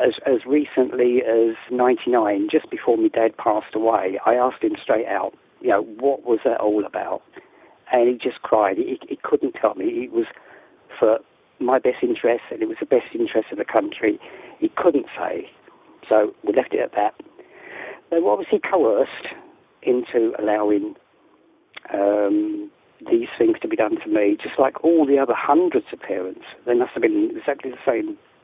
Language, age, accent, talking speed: English, 40-59, British, 185 wpm